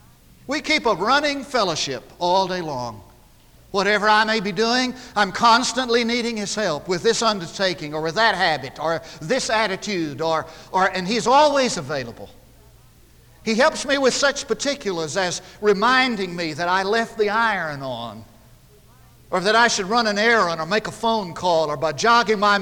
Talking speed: 170 wpm